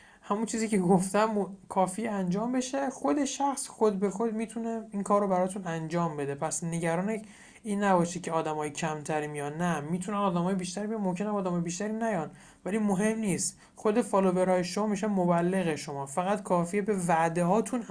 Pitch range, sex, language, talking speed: 160-205 Hz, male, Persian, 170 wpm